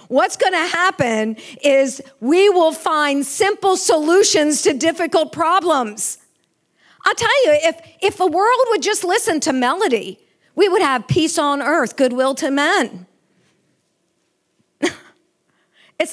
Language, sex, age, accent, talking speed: English, female, 50-69, American, 125 wpm